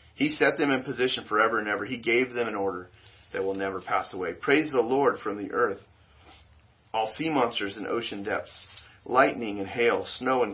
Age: 40-59